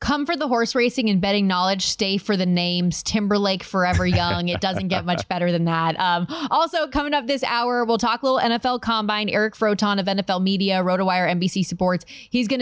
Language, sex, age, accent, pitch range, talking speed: English, female, 20-39, American, 195-260 Hz, 210 wpm